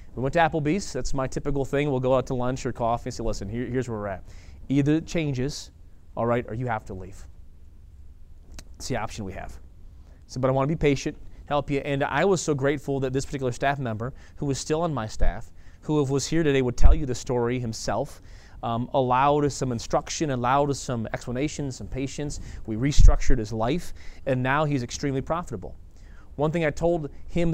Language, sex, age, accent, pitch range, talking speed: English, male, 30-49, American, 100-140 Hz, 215 wpm